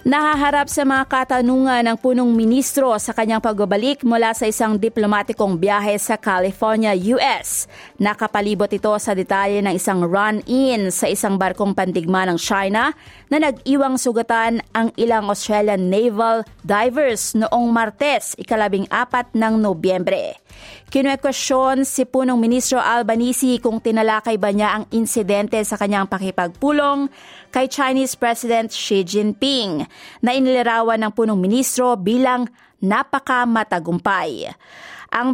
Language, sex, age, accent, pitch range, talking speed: Filipino, female, 30-49, native, 205-250 Hz, 120 wpm